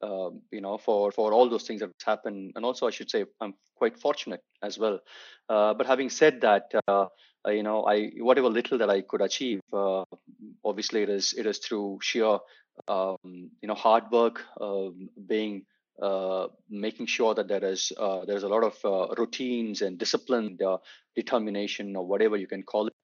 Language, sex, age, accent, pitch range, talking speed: English, male, 30-49, Indian, 105-125 Hz, 195 wpm